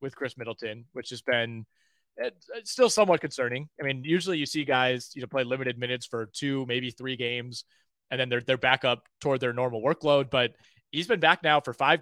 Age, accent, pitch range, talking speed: 30-49, American, 125-150 Hz, 215 wpm